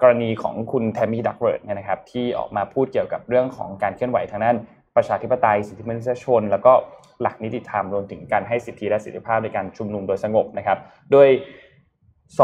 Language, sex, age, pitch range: Thai, male, 20-39, 105-125 Hz